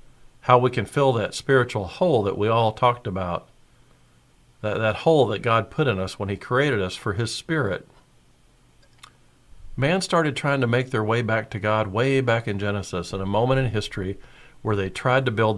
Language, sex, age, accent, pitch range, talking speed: English, male, 50-69, American, 100-125 Hz, 195 wpm